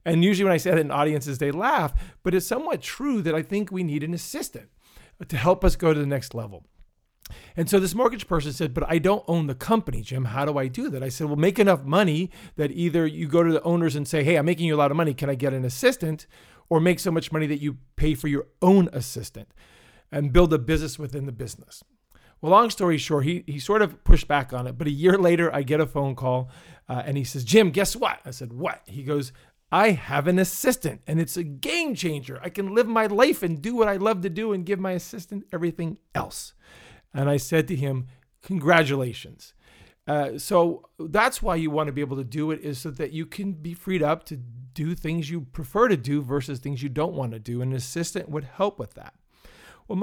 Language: English